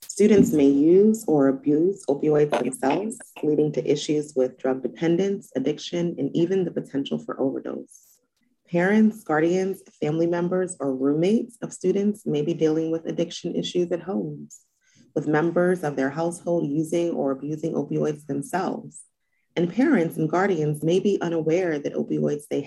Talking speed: 150 wpm